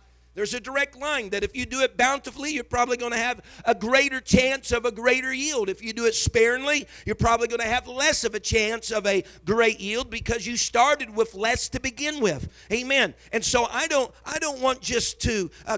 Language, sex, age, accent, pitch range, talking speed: English, male, 50-69, American, 200-260 Hz, 225 wpm